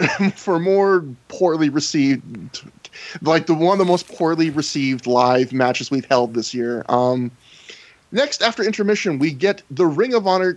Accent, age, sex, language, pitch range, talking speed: American, 30-49, male, English, 135-180 Hz, 160 wpm